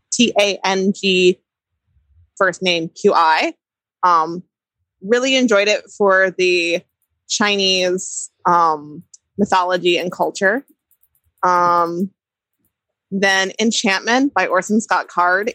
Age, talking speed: 20-39, 85 wpm